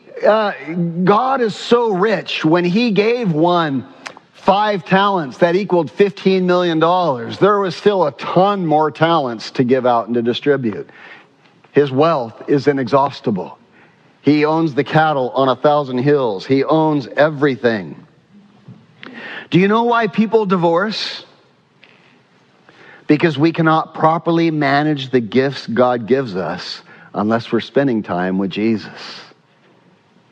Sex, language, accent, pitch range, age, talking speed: male, English, American, 135-190 Hz, 50-69, 130 wpm